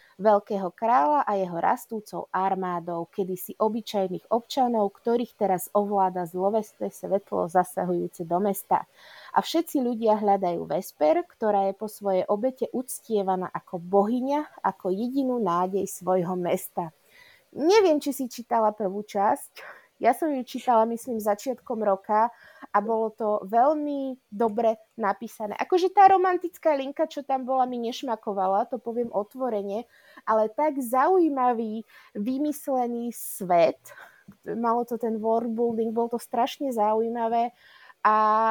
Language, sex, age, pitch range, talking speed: Slovak, female, 20-39, 205-265 Hz, 125 wpm